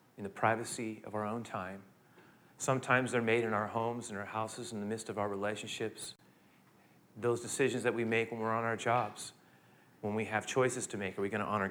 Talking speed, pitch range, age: 220 wpm, 110-130 Hz, 40-59